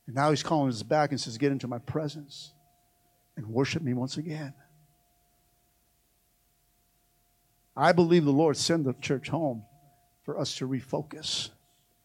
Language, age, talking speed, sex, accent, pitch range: English, 50-69, 145 wpm, male, American, 125-150 Hz